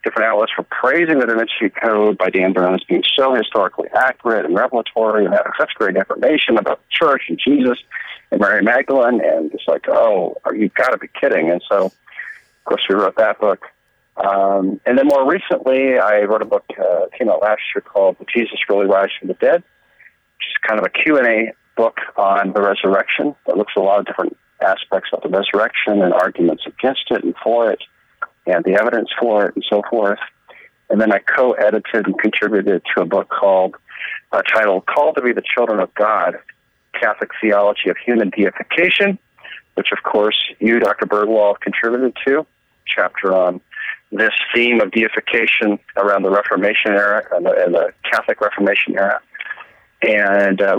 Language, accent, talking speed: English, American, 185 wpm